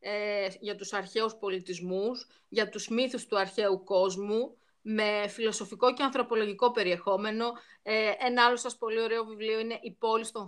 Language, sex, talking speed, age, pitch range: Greek, female, 150 wpm, 30-49, 210-255 Hz